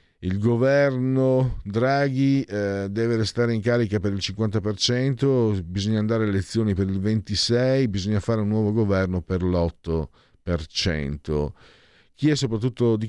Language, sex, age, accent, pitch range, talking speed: Italian, male, 50-69, native, 85-120 Hz, 120 wpm